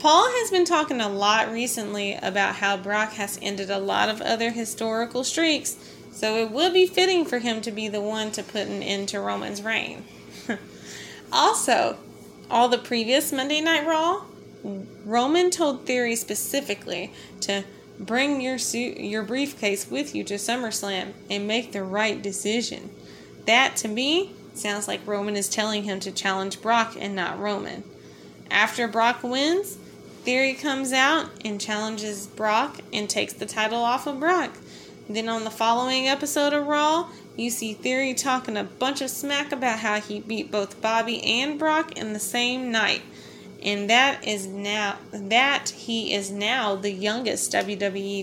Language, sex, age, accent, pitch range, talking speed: English, female, 20-39, American, 205-260 Hz, 165 wpm